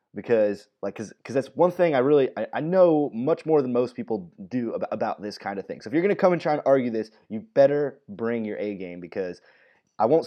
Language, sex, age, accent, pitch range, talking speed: English, male, 20-39, American, 105-135 Hz, 250 wpm